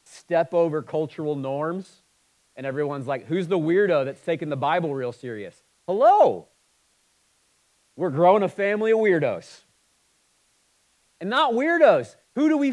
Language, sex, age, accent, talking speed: English, male, 40-59, American, 135 wpm